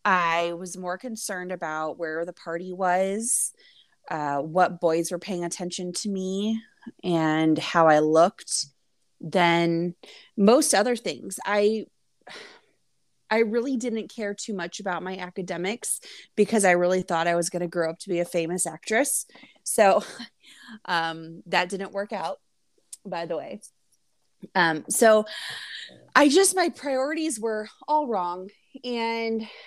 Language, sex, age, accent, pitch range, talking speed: English, female, 20-39, American, 170-220 Hz, 140 wpm